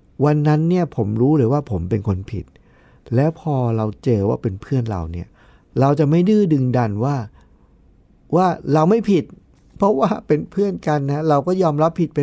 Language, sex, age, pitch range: Thai, male, 60-79, 105-155 Hz